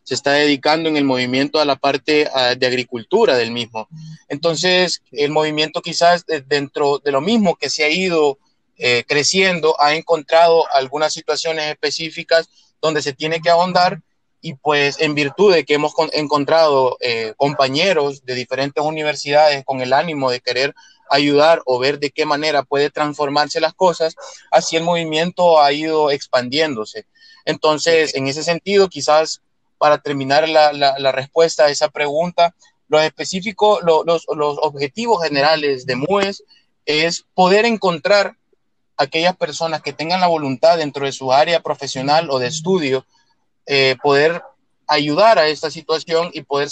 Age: 30-49